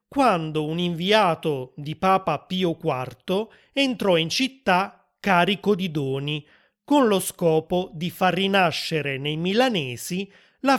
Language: Italian